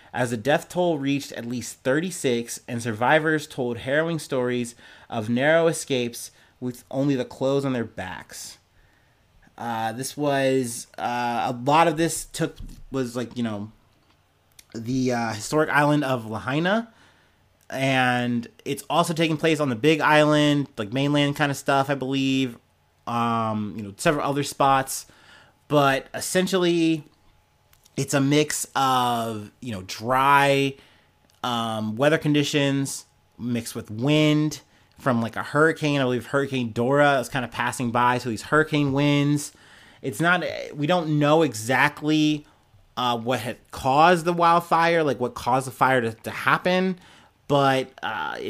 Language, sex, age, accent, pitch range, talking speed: English, male, 30-49, American, 120-150 Hz, 145 wpm